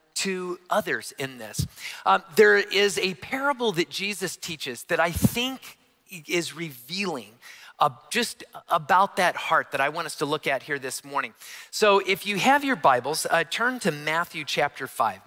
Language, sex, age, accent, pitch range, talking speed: English, male, 40-59, American, 155-200 Hz, 175 wpm